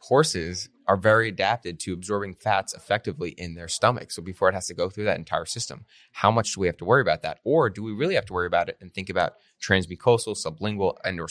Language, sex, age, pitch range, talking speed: English, male, 20-39, 85-100 Hz, 245 wpm